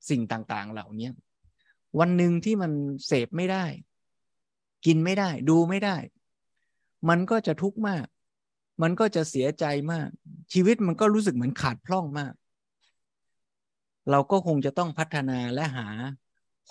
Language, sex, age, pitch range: Thai, male, 20-39, 125-160 Hz